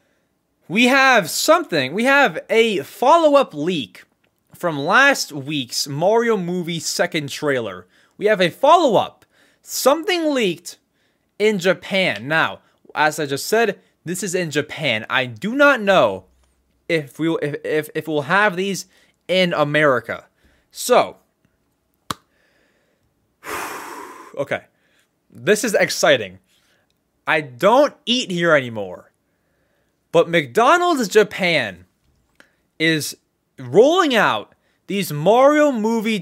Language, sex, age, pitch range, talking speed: English, male, 20-39, 150-220 Hz, 110 wpm